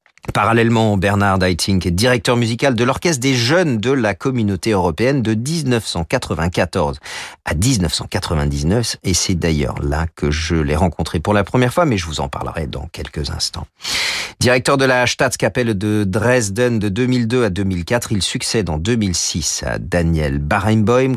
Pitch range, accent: 80-115 Hz, French